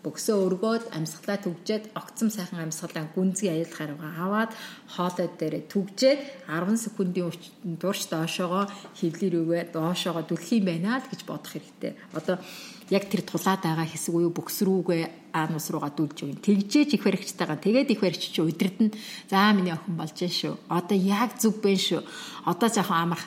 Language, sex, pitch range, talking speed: Russian, female, 175-220 Hz, 105 wpm